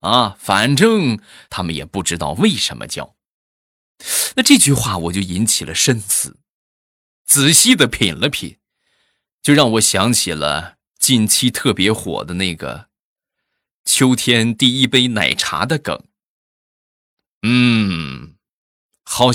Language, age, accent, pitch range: Chinese, 20-39, native, 95-145 Hz